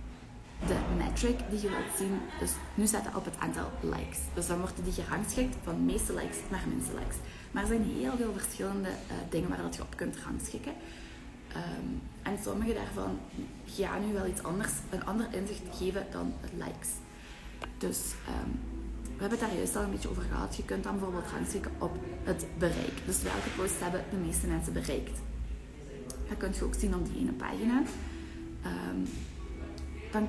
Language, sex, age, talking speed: Dutch, female, 20-39, 180 wpm